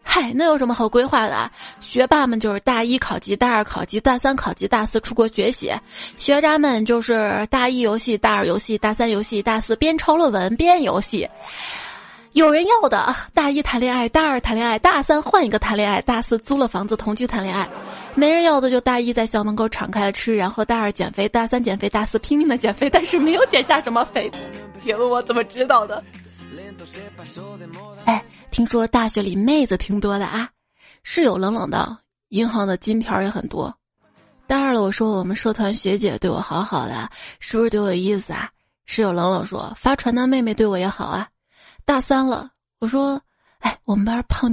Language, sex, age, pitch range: Chinese, female, 20-39, 210-260 Hz